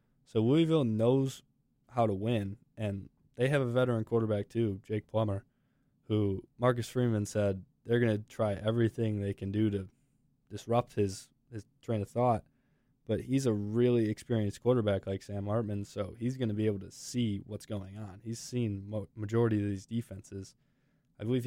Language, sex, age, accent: English, male, 20-39, American